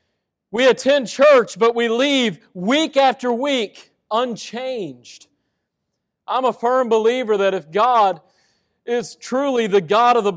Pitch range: 200-245 Hz